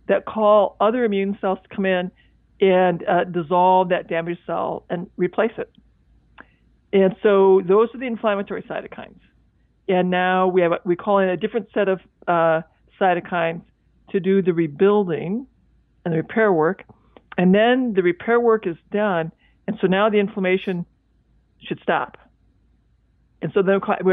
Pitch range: 175-210 Hz